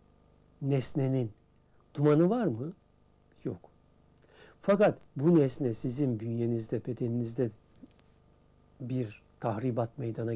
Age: 60-79